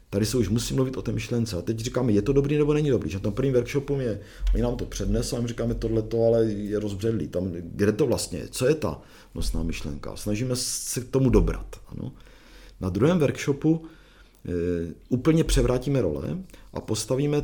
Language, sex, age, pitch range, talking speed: Czech, male, 50-69, 100-130 Hz, 205 wpm